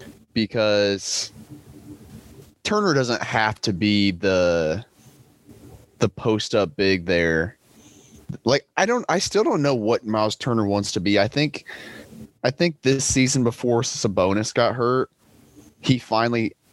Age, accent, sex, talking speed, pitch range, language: 20-39, American, male, 135 wpm, 95-115 Hz, English